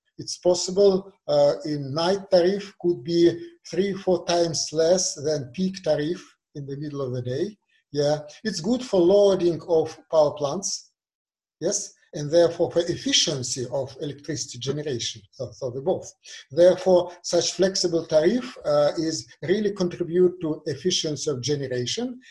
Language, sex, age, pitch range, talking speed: English, male, 50-69, 150-190 Hz, 145 wpm